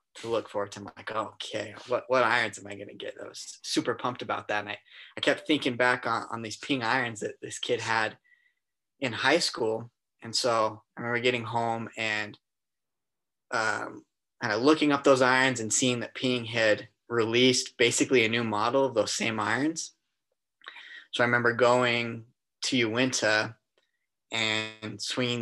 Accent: American